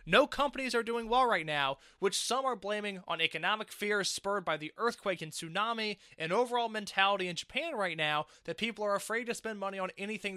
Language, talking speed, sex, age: English, 210 wpm, male, 20-39